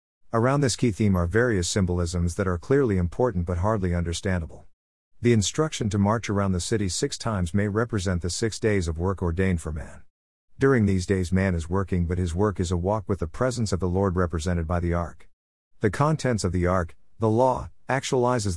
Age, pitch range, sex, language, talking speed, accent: 50-69, 85-110 Hz, male, English, 205 wpm, American